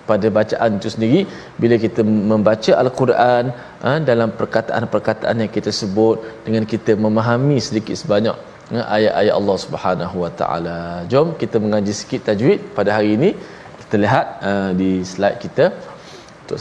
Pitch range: 105-135 Hz